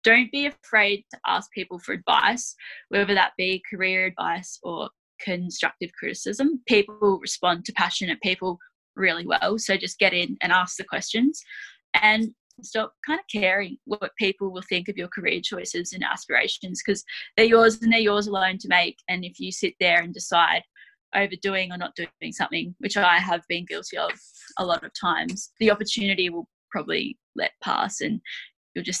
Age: 10-29